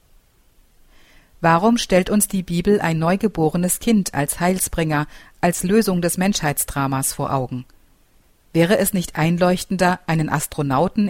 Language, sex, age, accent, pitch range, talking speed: German, female, 50-69, German, 155-195 Hz, 120 wpm